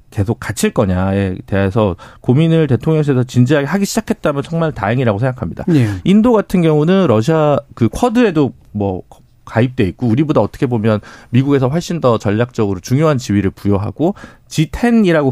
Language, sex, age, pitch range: Korean, male, 40-59, 105-165 Hz